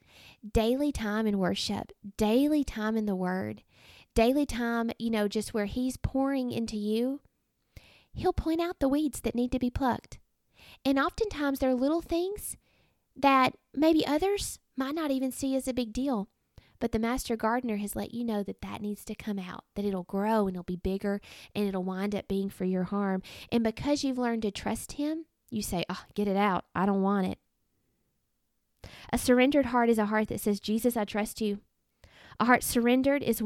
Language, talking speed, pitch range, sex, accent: English, 190 wpm, 200-250 Hz, female, American